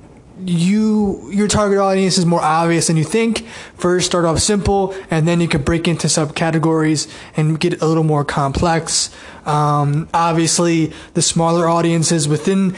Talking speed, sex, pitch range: 155 wpm, male, 155-175 Hz